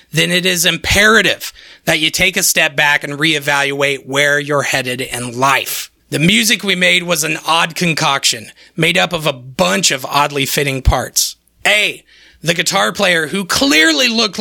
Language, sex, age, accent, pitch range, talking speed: English, male, 30-49, American, 140-185 Hz, 170 wpm